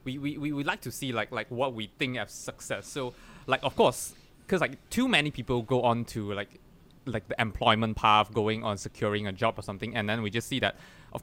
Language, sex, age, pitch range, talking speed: English, male, 20-39, 105-125 Hz, 240 wpm